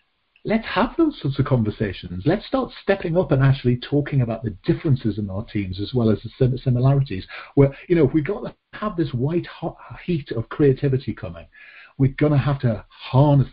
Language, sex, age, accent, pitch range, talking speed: English, male, 50-69, British, 115-160 Hz, 200 wpm